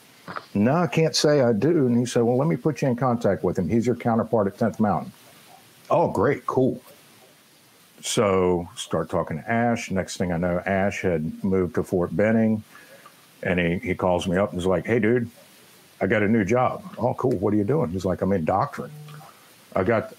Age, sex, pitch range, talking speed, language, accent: 60-79, male, 90-120 Hz, 210 wpm, English, American